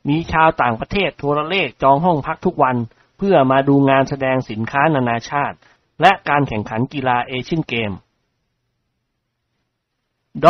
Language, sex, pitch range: Thai, male, 125-150 Hz